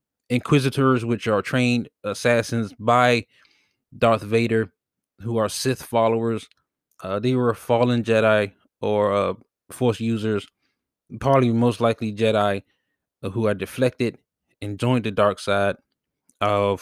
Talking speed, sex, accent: 125 wpm, male, American